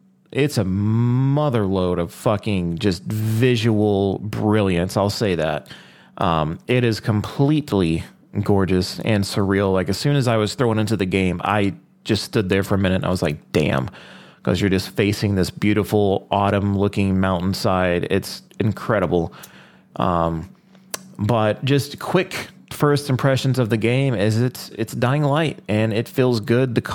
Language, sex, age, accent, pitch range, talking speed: English, male, 30-49, American, 95-120 Hz, 160 wpm